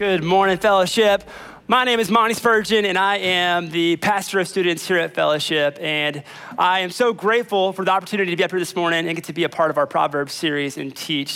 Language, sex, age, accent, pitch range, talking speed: English, male, 30-49, American, 160-210 Hz, 235 wpm